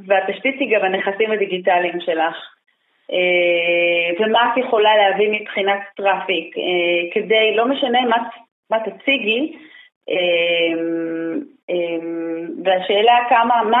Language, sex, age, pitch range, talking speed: Hebrew, female, 30-49, 180-245 Hz, 90 wpm